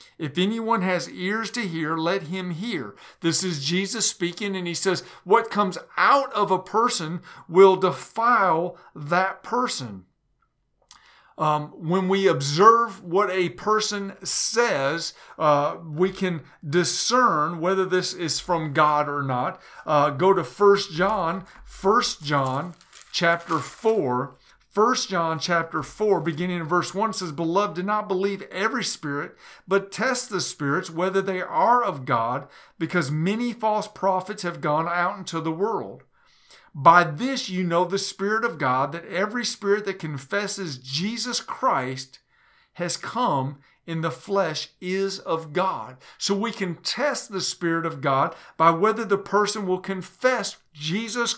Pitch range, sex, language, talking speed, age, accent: 165-205 Hz, male, English, 145 wpm, 50-69, American